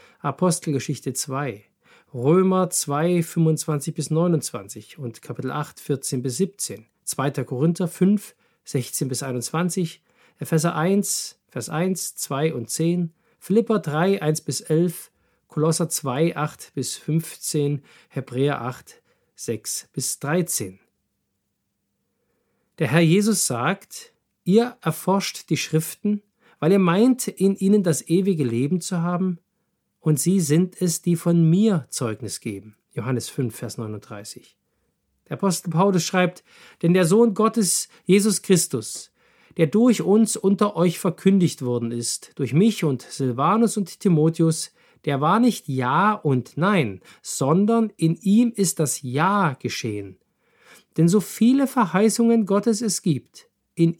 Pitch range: 140-195 Hz